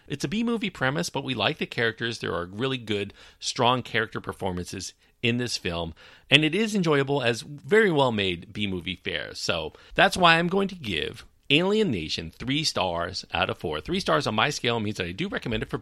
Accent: American